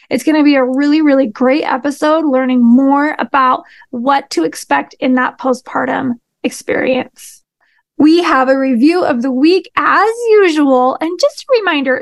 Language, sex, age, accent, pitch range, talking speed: English, female, 20-39, American, 260-320 Hz, 160 wpm